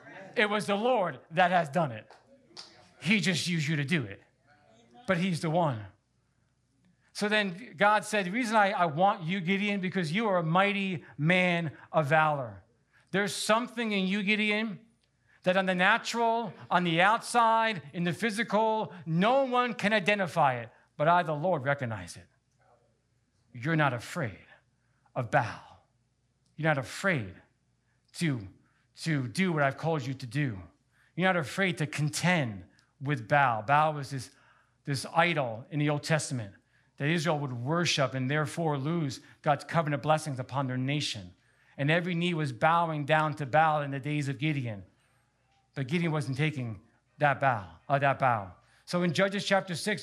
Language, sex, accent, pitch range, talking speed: English, male, American, 135-190 Hz, 160 wpm